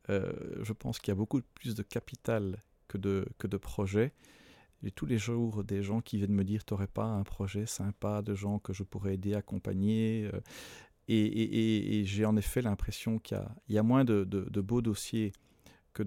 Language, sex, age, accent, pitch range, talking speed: French, male, 40-59, French, 100-110 Hz, 215 wpm